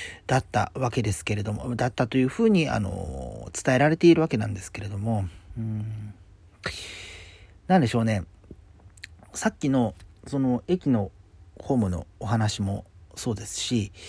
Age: 40-59